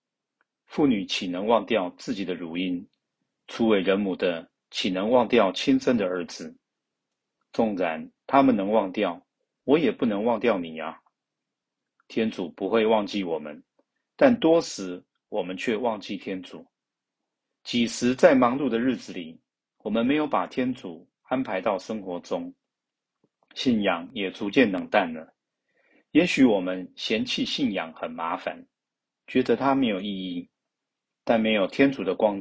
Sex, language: male, Chinese